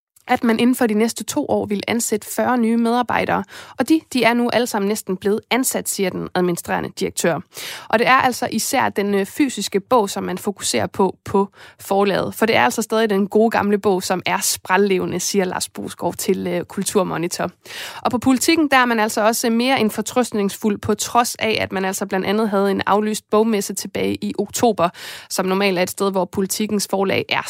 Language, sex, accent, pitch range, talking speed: Danish, female, native, 195-230 Hz, 205 wpm